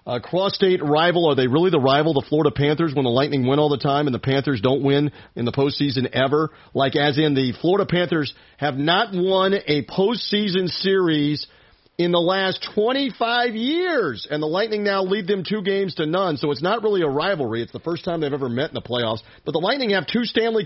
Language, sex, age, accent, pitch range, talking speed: English, male, 40-59, American, 145-205 Hz, 220 wpm